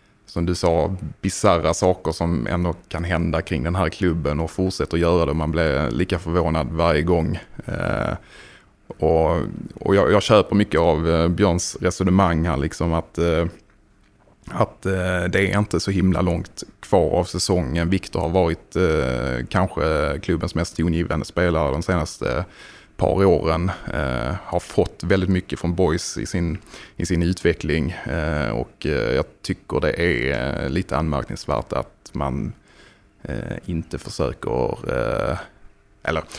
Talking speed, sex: 145 wpm, male